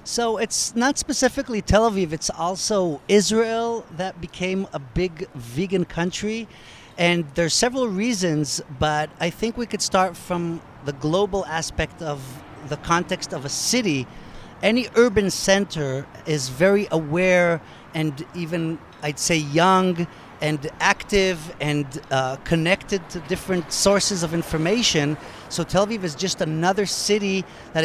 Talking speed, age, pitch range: 140 wpm, 40-59, 150-200 Hz